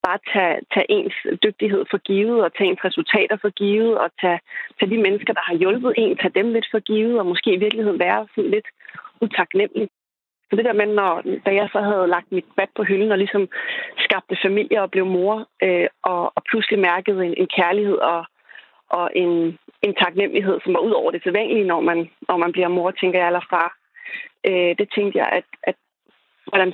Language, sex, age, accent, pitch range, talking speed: Danish, female, 30-49, native, 190-225 Hz, 200 wpm